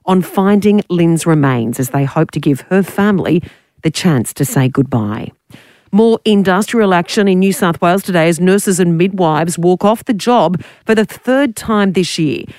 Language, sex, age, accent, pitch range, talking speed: English, female, 40-59, Australian, 145-180 Hz, 180 wpm